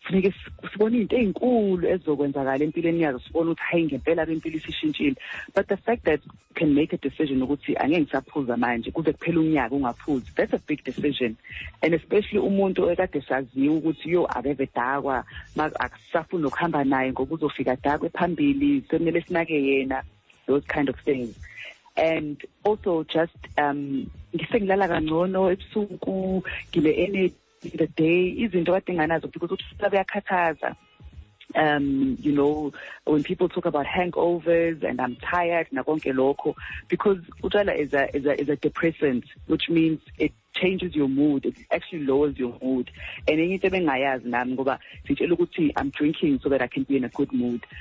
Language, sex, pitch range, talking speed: English, female, 135-175 Hz, 95 wpm